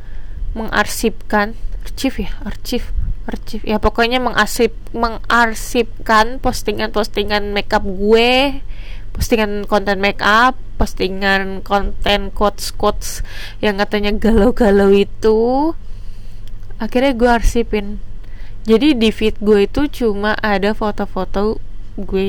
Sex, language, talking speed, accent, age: female, Indonesian, 95 wpm, native, 20-39